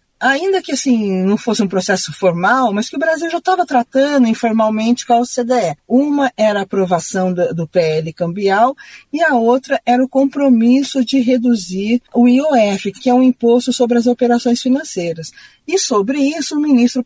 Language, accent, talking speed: Portuguese, Brazilian, 175 wpm